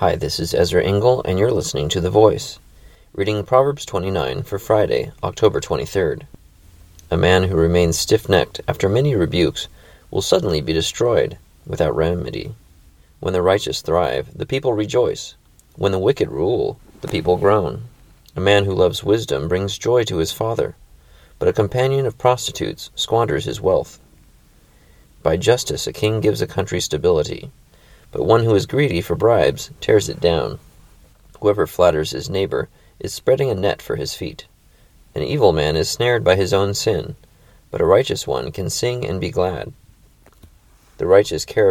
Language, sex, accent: English, male, American